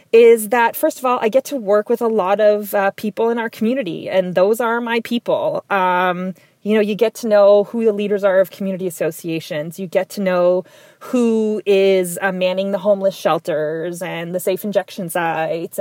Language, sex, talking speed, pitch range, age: English, female, 200 wpm, 185-230 Hz, 20-39